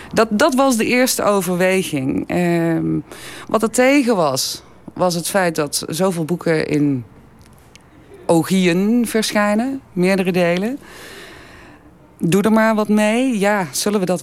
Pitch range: 150-205 Hz